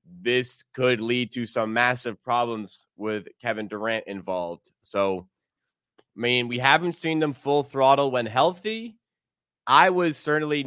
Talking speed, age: 140 wpm, 20-39